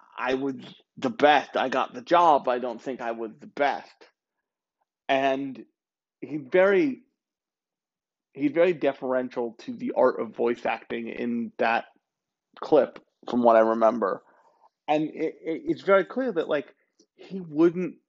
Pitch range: 125-155 Hz